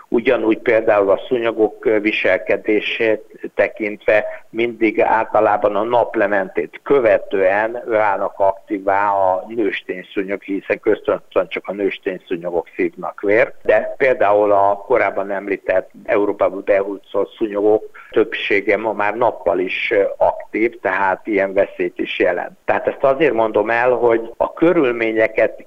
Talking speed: 120 wpm